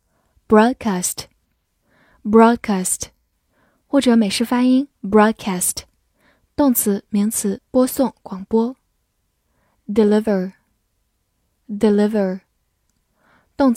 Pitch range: 195-240 Hz